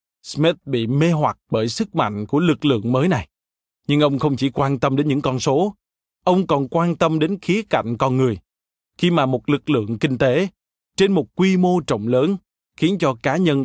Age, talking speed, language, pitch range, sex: 20-39, 210 wpm, Vietnamese, 130-170 Hz, male